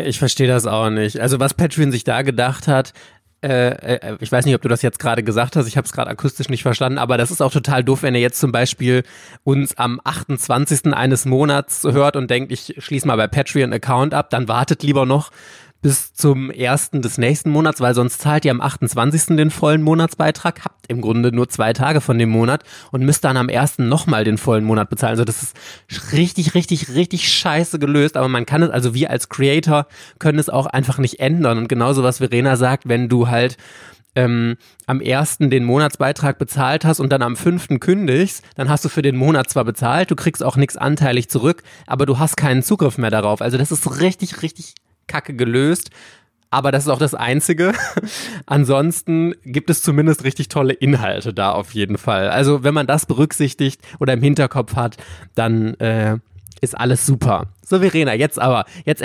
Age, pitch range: 20-39, 125-150 Hz